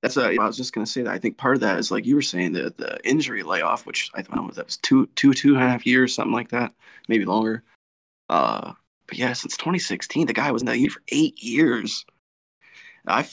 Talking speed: 250 wpm